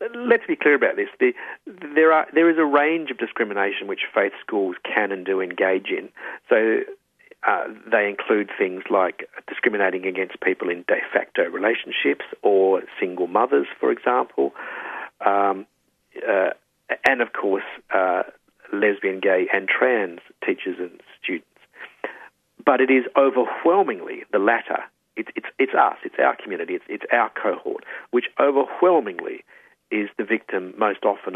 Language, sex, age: English, male, 50-69